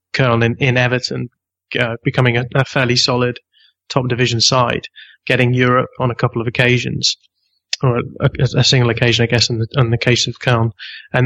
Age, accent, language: 20-39, British, English